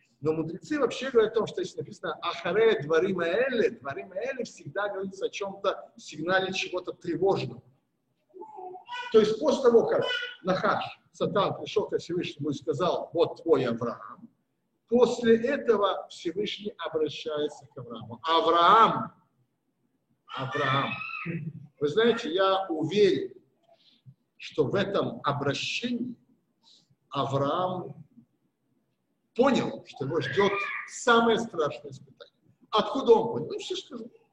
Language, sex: Russian, male